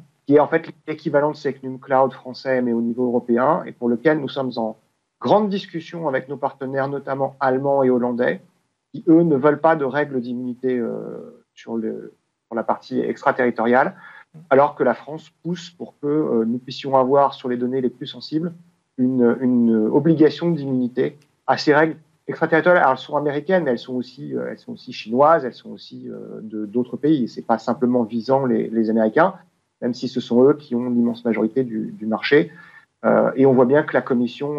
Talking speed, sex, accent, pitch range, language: 200 wpm, male, French, 120-150 Hz, French